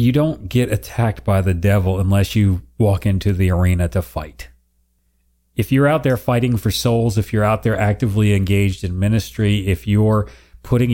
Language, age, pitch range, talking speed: English, 40-59, 80-110 Hz, 180 wpm